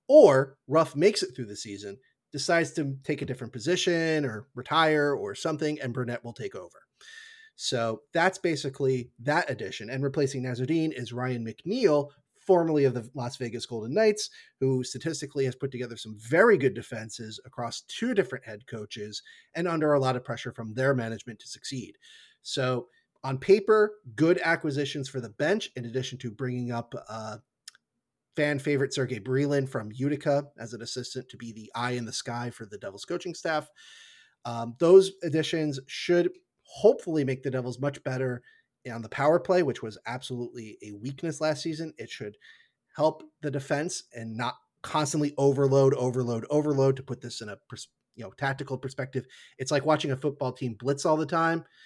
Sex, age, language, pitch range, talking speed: male, 30-49, English, 125-160 Hz, 170 wpm